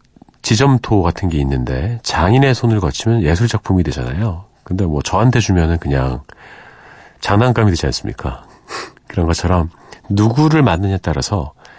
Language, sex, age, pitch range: Korean, male, 40-59, 80-120 Hz